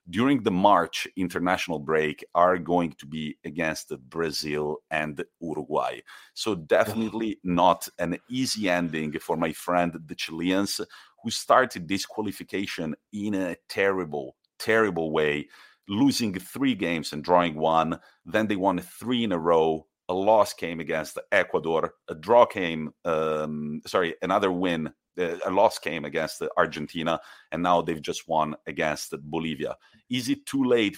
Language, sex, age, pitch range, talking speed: English, male, 40-59, 80-105 Hz, 145 wpm